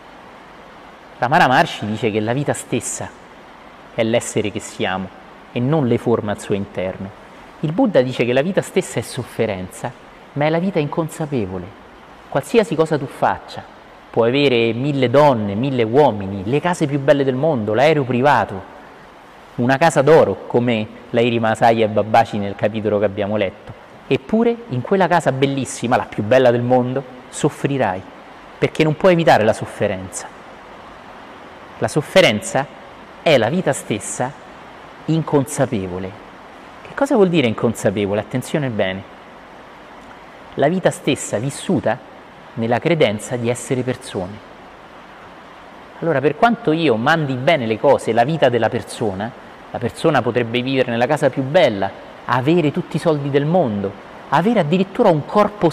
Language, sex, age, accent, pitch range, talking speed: Italian, male, 30-49, native, 110-155 Hz, 145 wpm